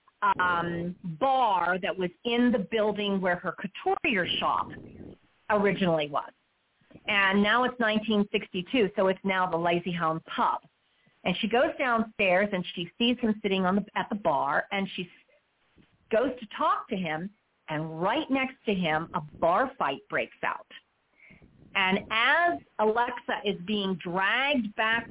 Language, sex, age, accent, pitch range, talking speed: English, female, 40-59, American, 180-245 Hz, 150 wpm